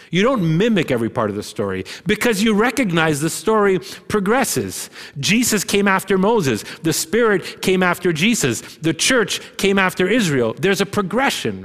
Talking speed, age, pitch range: 160 wpm, 30-49, 140-190 Hz